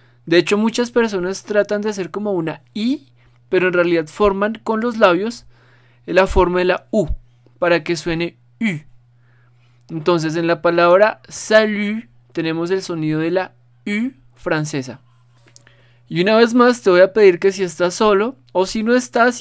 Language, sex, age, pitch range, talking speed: Spanish, male, 20-39, 120-185 Hz, 165 wpm